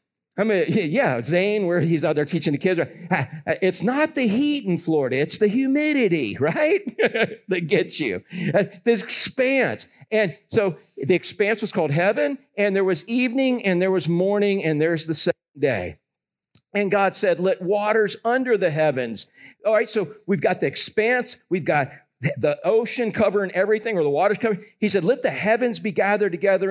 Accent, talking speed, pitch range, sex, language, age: American, 180 wpm, 165-225 Hz, male, English, 50-69